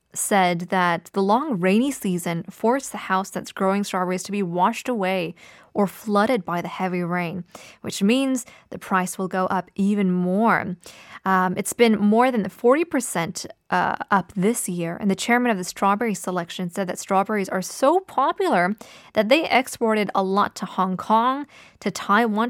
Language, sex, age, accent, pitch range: Korean, female, 20-39, American, 185-255 Hz